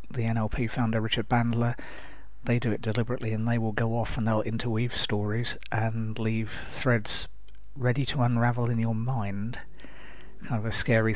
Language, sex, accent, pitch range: English, male, British, 110-120 Hz